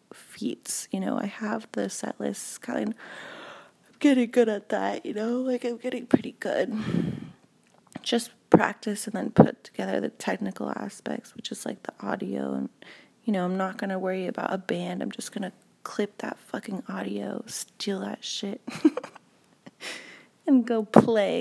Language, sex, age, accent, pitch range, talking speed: English, female, 30-49, American, 185-235 Hz, 165 wpm